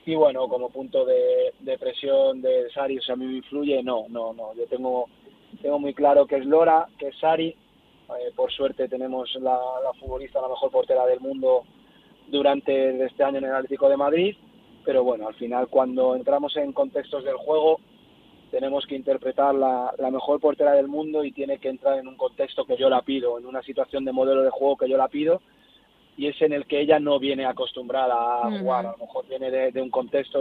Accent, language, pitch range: Spanish, Spanish, 130-160 Hz